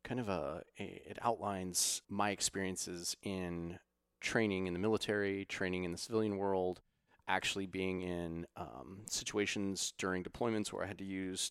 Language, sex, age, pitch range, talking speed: English, male, 30-49, 95-130 Hz, 150 wpm